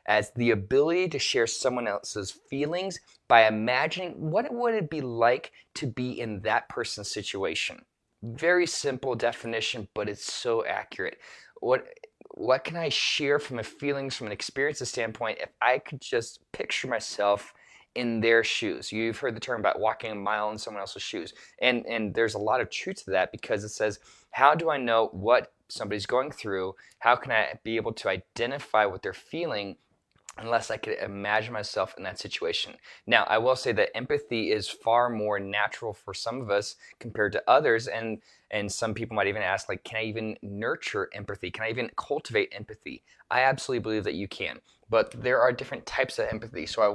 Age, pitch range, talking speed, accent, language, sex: 20-39, 110-145 Hz, 190 wpm, American, English, male